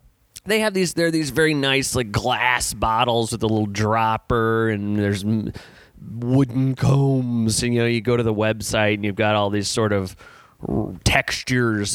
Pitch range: 115-160 Hz